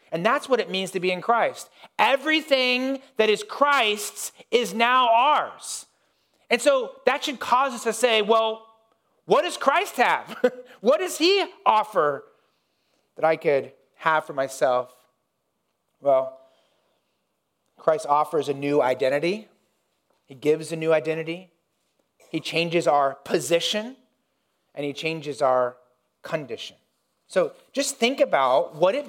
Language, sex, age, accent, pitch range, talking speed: English, male, 30-49, American, 170-250 Hz, 135 wpm